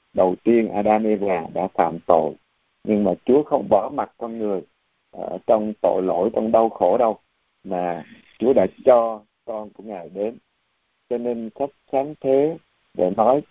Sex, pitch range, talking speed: male, 100-130 Hz, 175 wpm